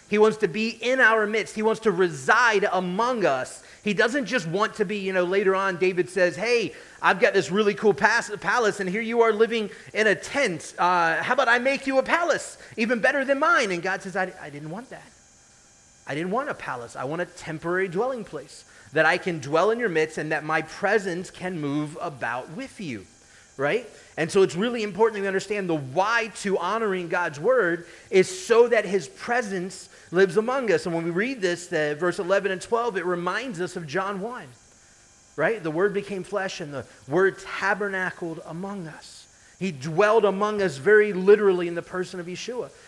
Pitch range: 175-230 Hz